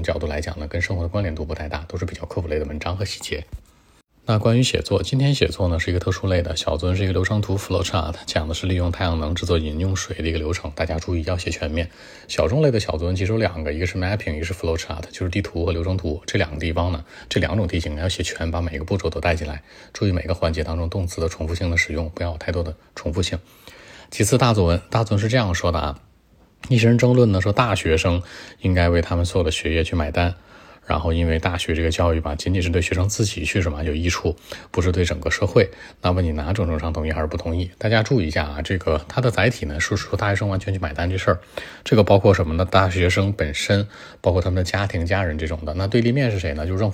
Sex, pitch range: male, 85-100 Hz